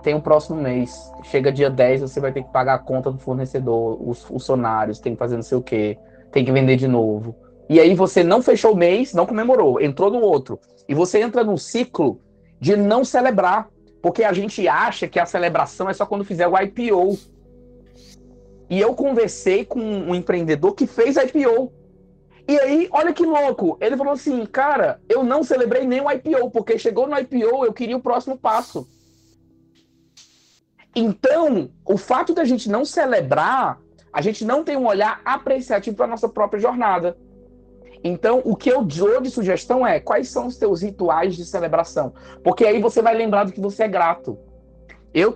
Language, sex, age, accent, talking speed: Portuguese, male, 20-39, Brazilian, 190 wpm